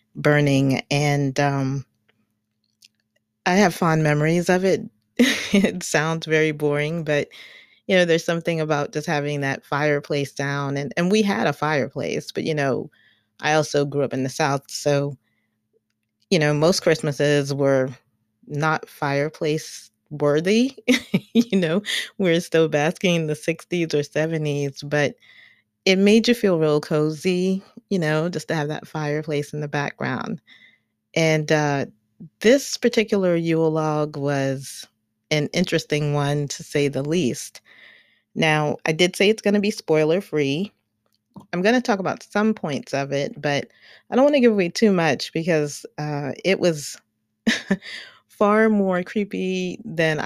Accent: American